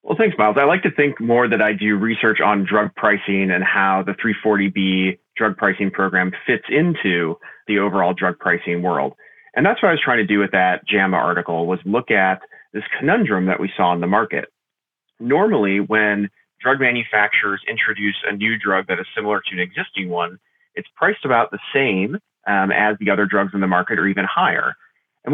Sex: male